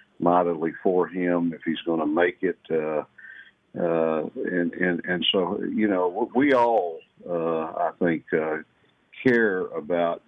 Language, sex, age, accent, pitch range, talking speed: English, male, 50-69, American, 85-110 Hz, 140 wpm